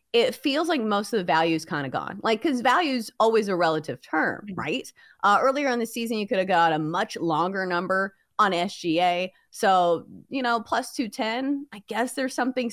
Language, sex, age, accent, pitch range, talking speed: English, female, 30-49, American, 175-245 Hz, 210 wpm